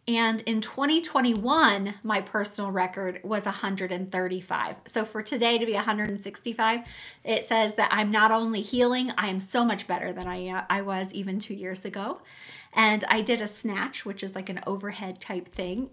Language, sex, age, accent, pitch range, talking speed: English, female, 20-39, American, 205-275 Hz, 175 wpm